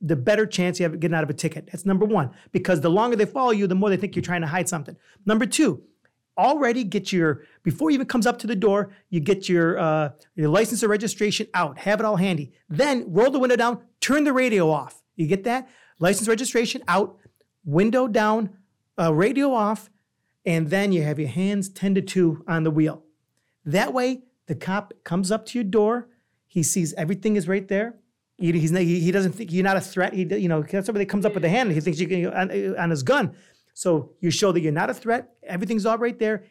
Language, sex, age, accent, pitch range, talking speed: English, male, 40-59, American, 165-215 Hz, 230 wpm